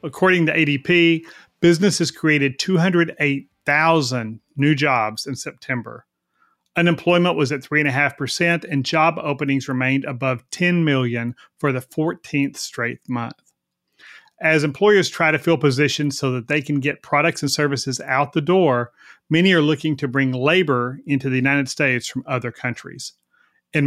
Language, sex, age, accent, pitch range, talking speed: English, male, 40-59, American, 130-160 Hz, 155 wpm